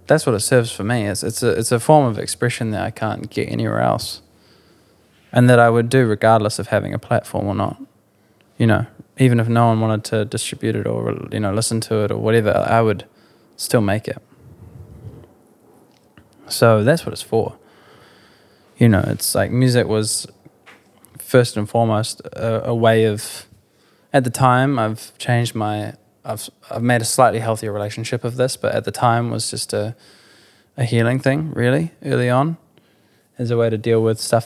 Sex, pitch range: male, 105-120 Hz